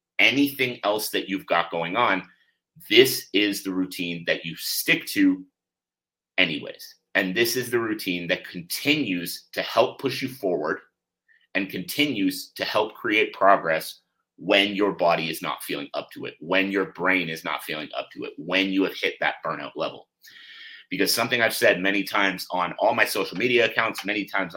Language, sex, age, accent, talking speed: English, male, 30-49, American, 180 wpm